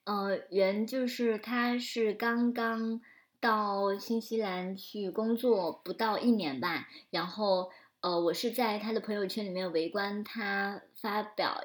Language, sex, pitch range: Chinese, male, 185-230 Hz